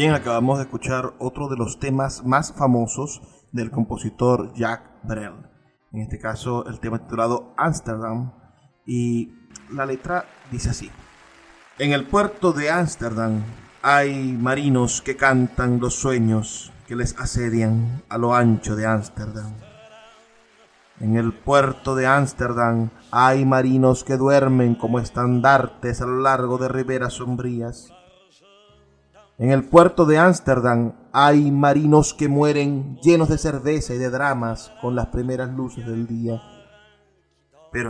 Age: 30-49